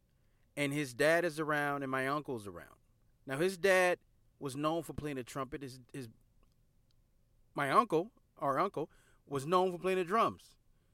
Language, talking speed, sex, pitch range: English, 165 wpm, male, 125-185 Hz